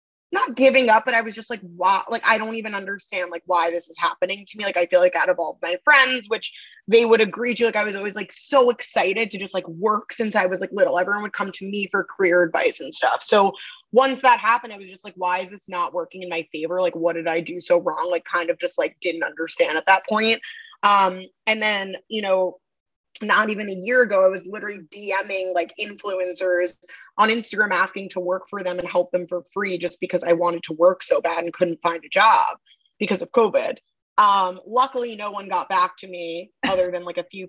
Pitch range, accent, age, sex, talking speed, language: 175-220 Hz, American, 20-39, female, 240 wpm, English